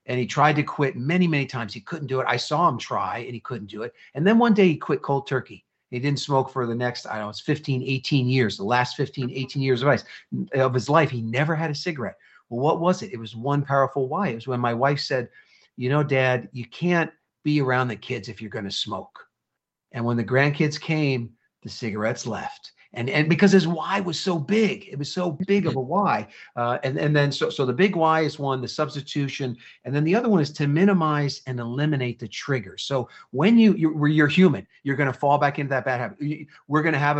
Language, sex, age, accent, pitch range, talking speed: English, male, 40-59, American, 125-160 Hz, 245 wpm